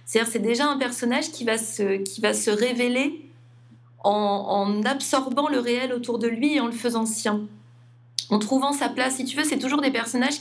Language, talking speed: French, 215 wpm